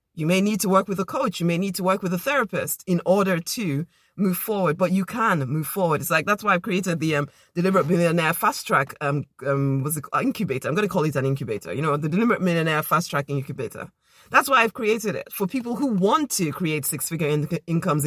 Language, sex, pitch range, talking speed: English, female, 155-200 Hz, 245 wpm